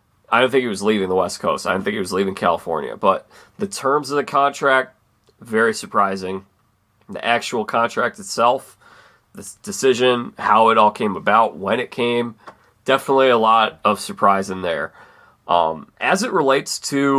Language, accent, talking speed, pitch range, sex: English, American, 175 wpm, 105-130 Hz, male